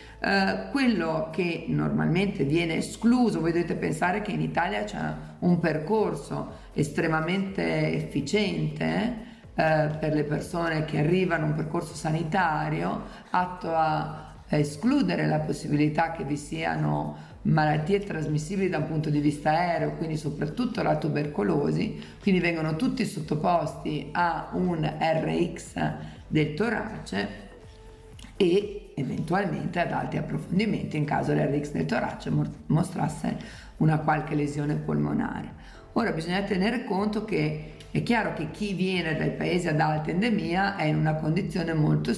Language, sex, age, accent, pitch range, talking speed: Italian, female, 50-69, native, 150-195 Hz, 130 wpm